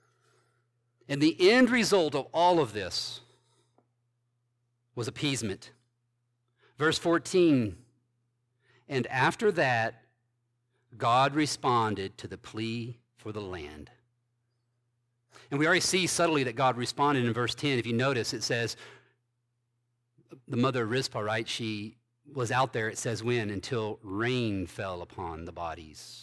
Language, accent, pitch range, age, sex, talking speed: English, American, 120-135 Hz, 40-59, male, 130 wpm